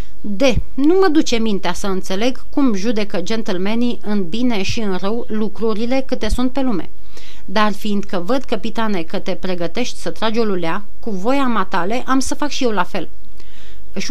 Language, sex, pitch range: Romanian, female, 190-240 Hz